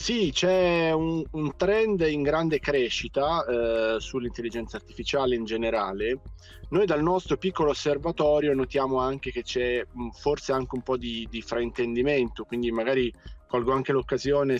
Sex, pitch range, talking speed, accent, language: male, 115-135 Hz, 140 wpm, native, Italian